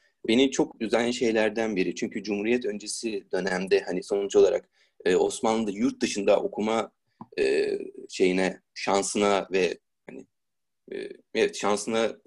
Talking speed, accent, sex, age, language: 120 wpm, native, male, 30-49, Turkish